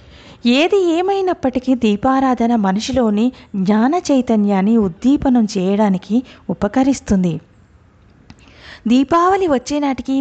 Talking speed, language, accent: 65 wpm, Telugu, native